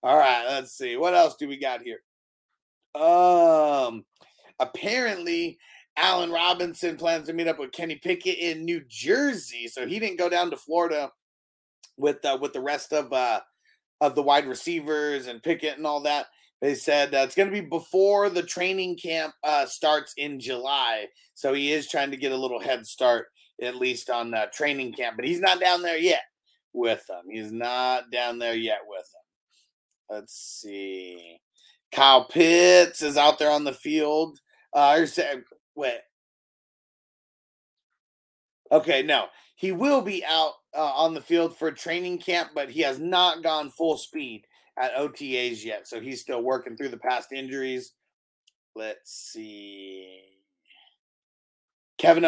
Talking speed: 160 wpm